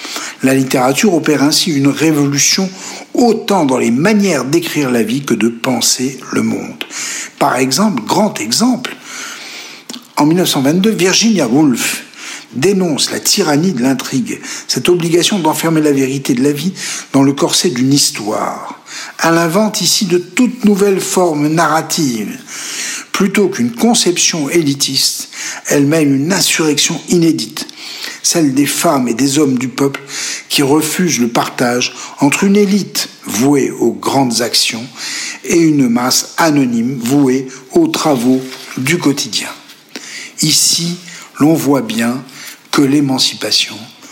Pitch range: 135-195 Hz